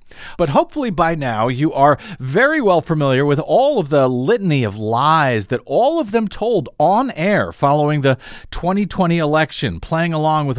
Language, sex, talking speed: English, male, 170 wpm